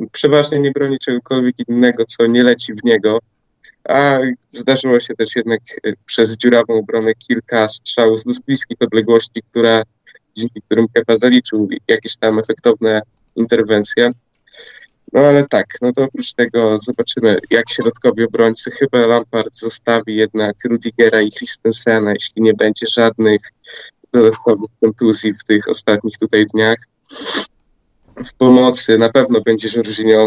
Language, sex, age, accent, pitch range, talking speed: Polish, male, 20-39, native, 110-125 Hz, 130 wpm